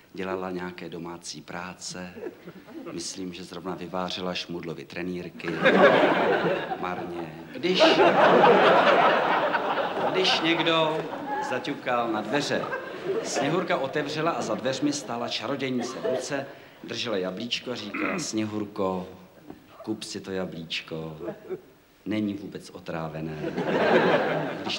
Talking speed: 95 wpm